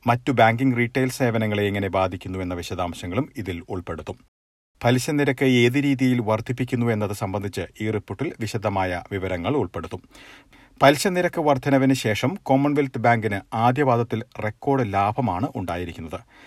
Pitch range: 100-130 Hz